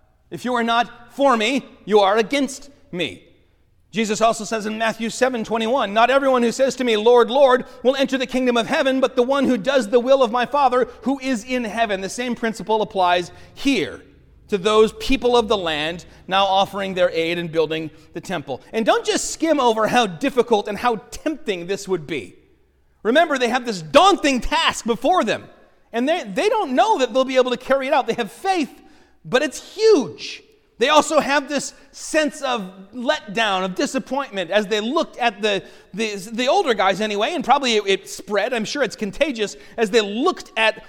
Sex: male